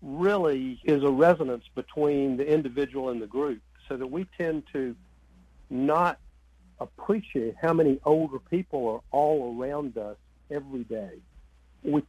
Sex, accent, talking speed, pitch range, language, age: male, American, 140 wpm, 105-140 Hz, English, 60-79